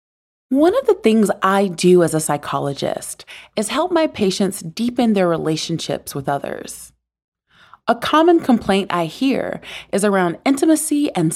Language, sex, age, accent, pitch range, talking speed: English, female, 30-49, American, 180-260 Hz, 145 wpm